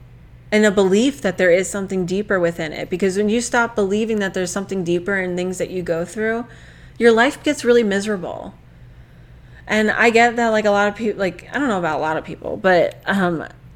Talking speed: 220 wpm